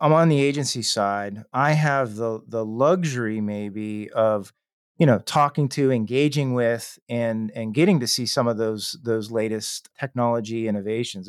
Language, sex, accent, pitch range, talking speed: English, male, American, 115-145 Hz, 160 wpm